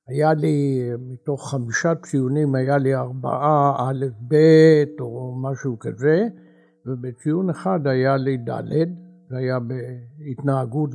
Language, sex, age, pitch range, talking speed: Hebrew, male, 60-79, 135-165 Hz, 115 wpm